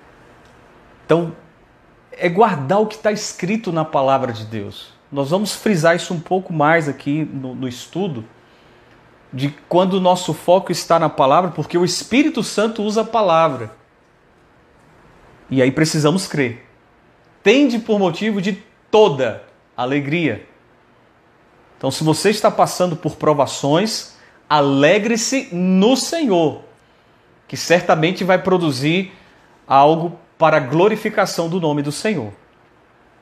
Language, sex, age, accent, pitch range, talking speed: Portuguese, male, 40-59, Brazilian, 145-190 Hz, 125 wpm